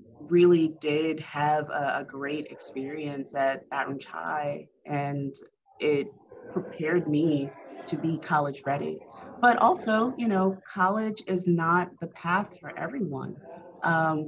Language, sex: English, female